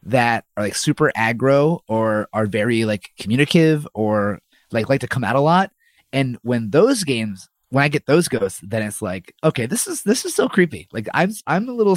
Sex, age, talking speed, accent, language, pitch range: male, 30-49, 210 wpm, American, English, 110-150 Hz